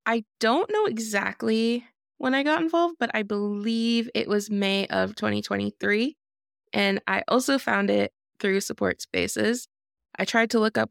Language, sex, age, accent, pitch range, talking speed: English, female, 20-39, American, 190-235 Hz, 160 wpm